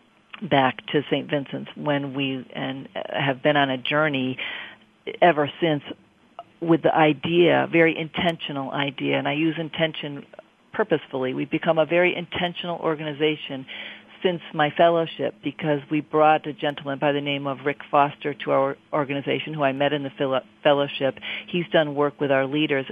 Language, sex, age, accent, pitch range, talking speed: English, female, 50-69, American, 135-155 Hz, 155 wpm